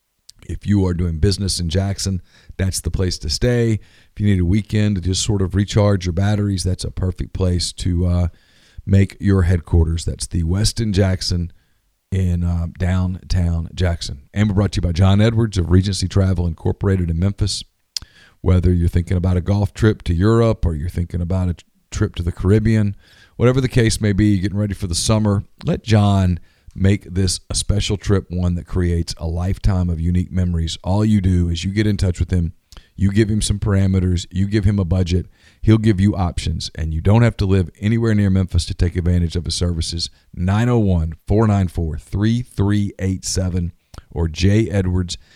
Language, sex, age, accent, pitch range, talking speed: English, male, 40-59, American, 85-105 Hz, 185 wpm